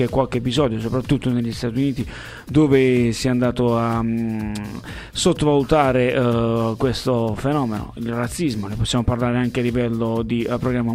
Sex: male